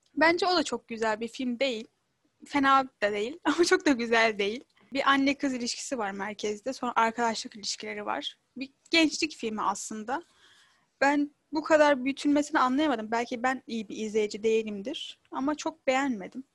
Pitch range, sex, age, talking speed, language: 220-275 Hz, female, 10-29, 160 wpm, Turkish